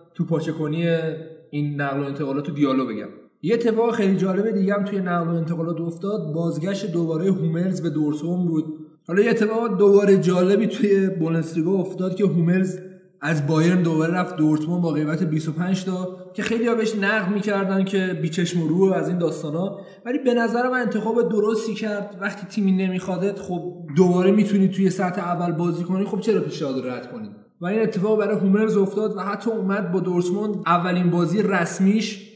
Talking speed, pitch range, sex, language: 170 wpm, 165-200 Hz, male, Persian